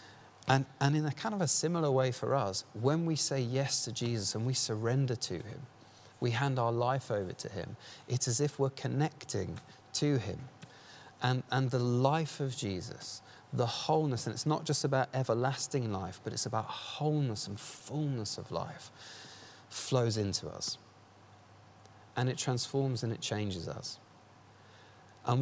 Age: 30-49